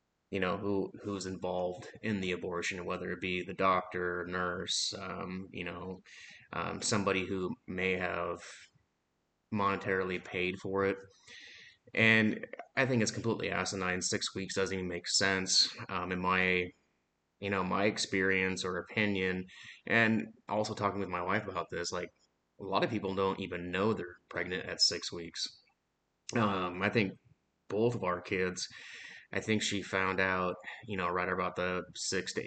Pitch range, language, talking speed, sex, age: 90-100 Hz, English, 160 wpm, male, 30-49